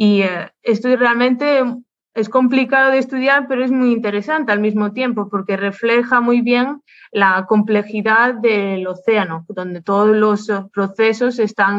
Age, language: 20-39, Spanish